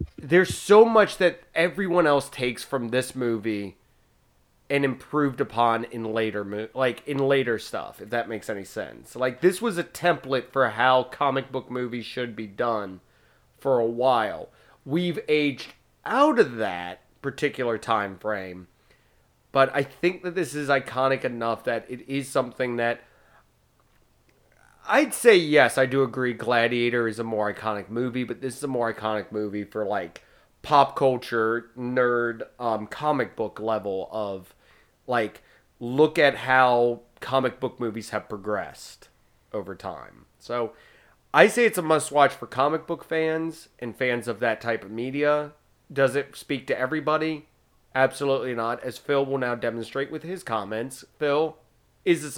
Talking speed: 155 wpm